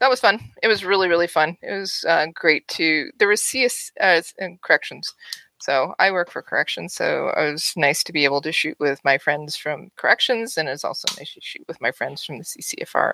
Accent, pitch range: American, 150-190 Hz